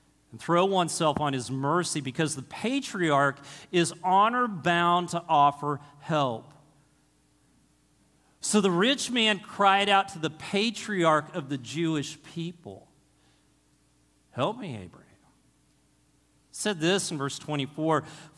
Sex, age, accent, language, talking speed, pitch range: male, 40-59, American, English, 115 wpm, 145-195 Hz